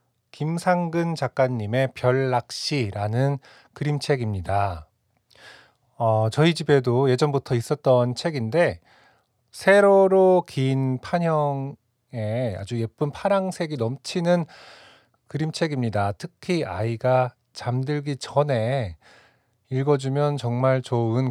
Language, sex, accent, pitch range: Korean, male, native, 120-150 Hz